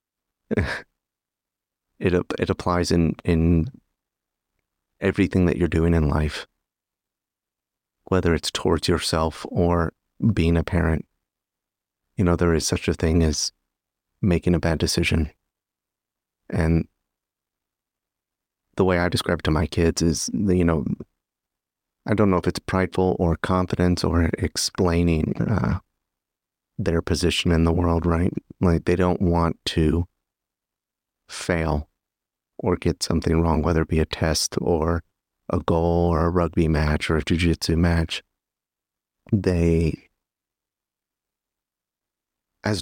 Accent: American